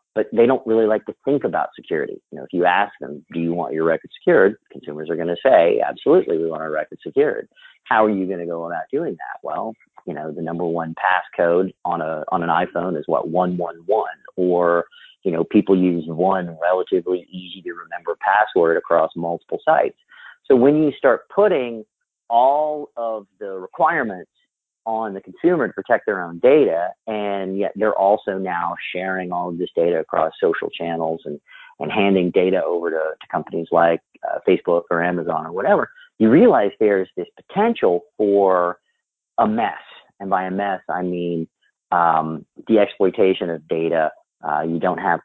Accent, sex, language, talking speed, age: American, male, English, 185 wpm, 40-59